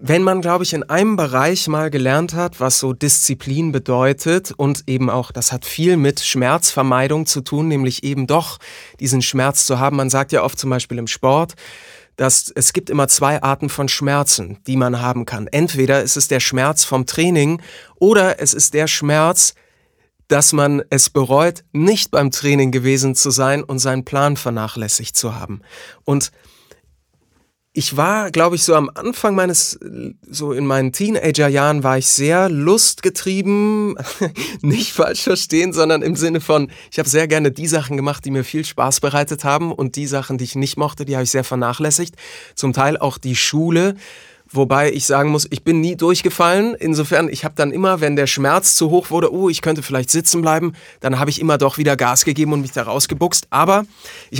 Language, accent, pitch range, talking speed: German, German, 135-165 Hz, 190 wpm